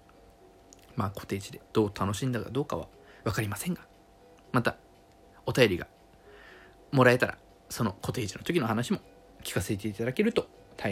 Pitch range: 100-145 Hz